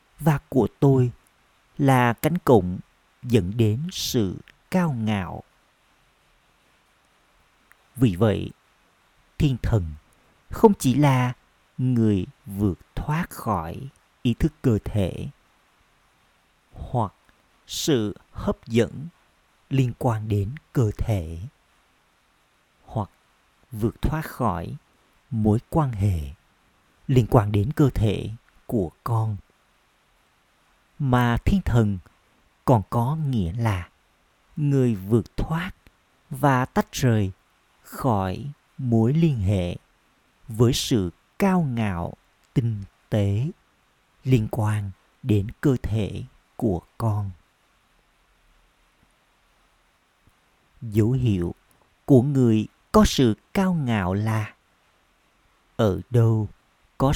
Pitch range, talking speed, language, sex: 100-135 Hz, 95 wpm, Vietnamese, male